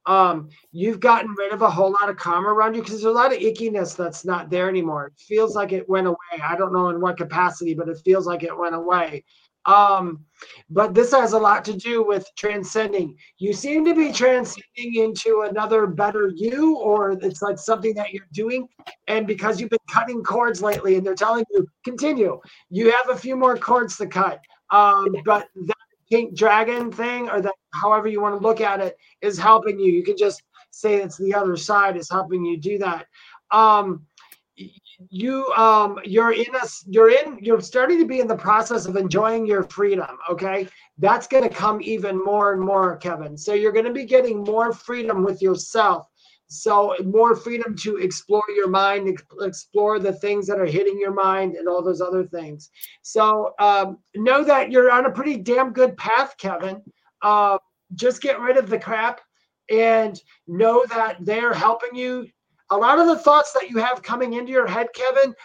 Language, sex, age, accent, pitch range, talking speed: English, male, 30-49, American, 190-230 Hz, 195 wpm